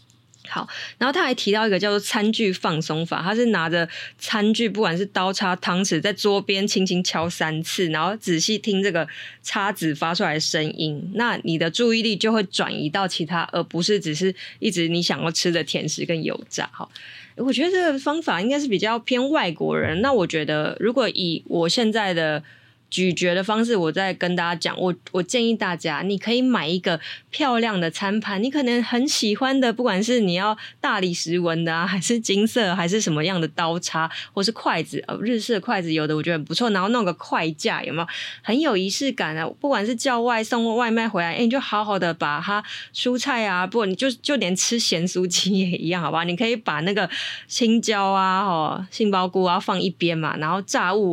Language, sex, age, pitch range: Chinese, female, 20-39, 170-225 Hz